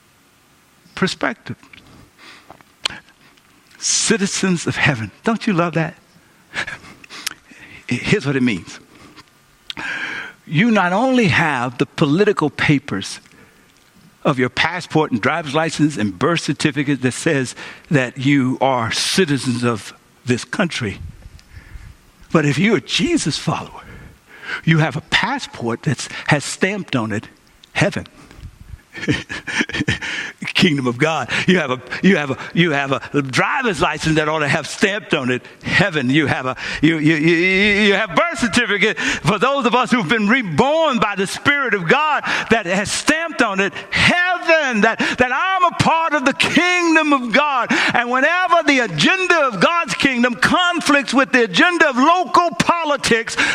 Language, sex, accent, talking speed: English, male, American, 140 wpm